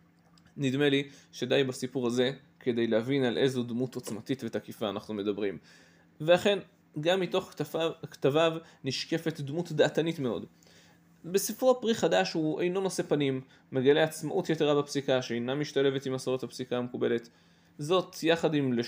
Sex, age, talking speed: male, 20-39, 135 wpm